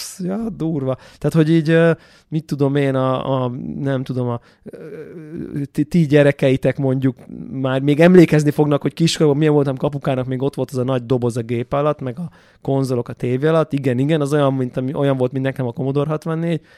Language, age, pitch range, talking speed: Hungarian, 20-39, 130-155 Hz, 195 wpm